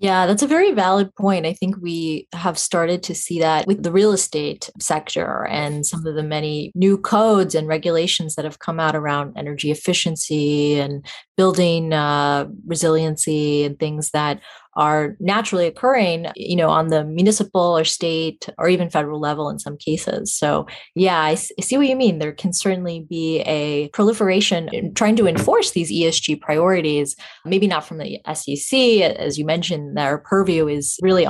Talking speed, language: 175 wpm, English